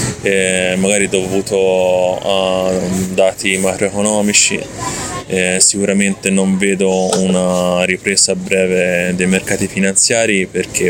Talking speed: 90 wpm